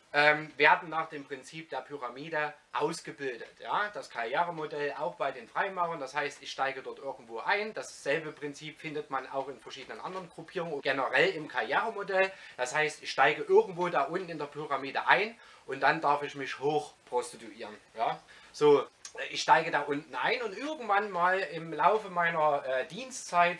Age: 30-49